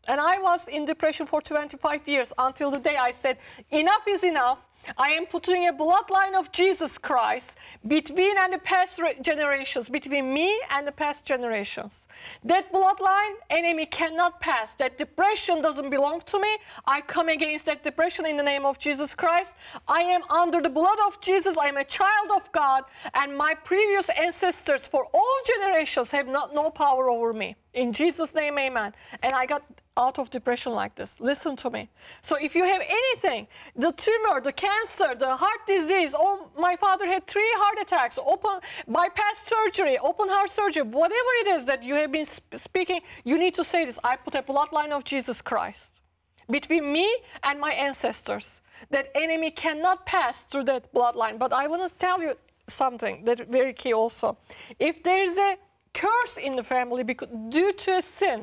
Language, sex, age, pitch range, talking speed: English, female, 50-69, 275-370 Hz, 185 wpm